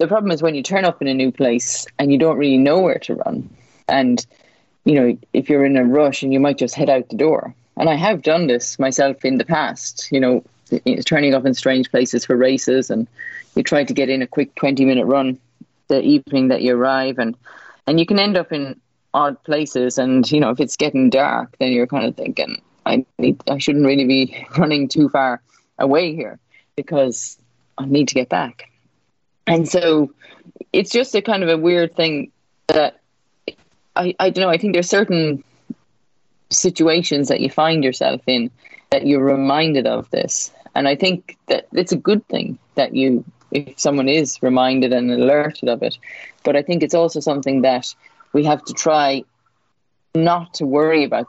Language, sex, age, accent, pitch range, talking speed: English, female, 30-49, Irish, 130-165 Hz, 200 wpm